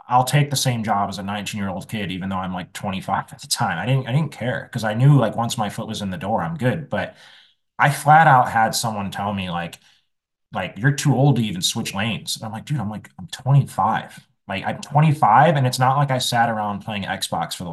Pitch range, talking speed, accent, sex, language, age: 100-135 Hz, 255 wpm, American, male, English, 20-39